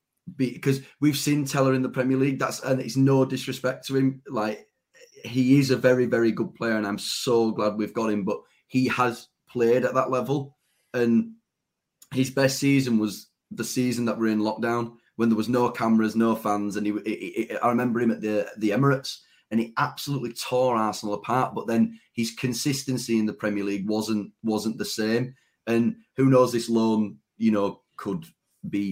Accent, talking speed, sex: British, 195 wpm, male